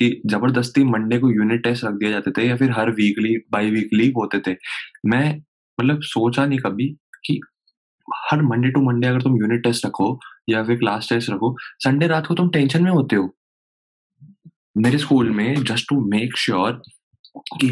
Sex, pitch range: male, 110-145 Hz